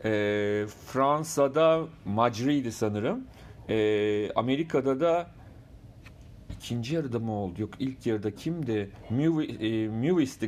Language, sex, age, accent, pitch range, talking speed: Turkish, male, 40-59, native, 110-150 Hz, 90 wpm